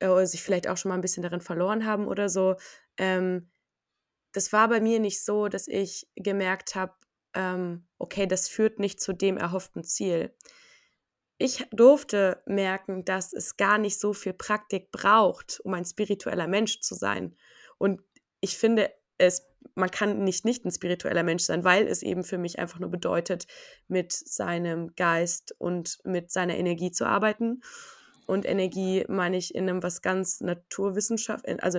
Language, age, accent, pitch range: German, 20-39, German, 185-215 Hz